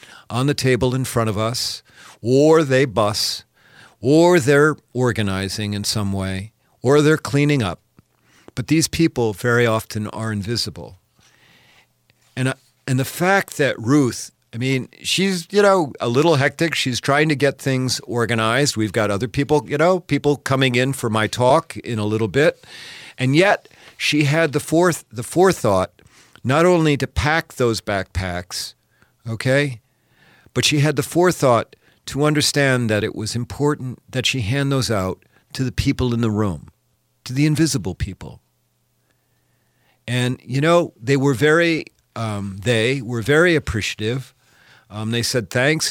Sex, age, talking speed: male, 50-69, 155 wpm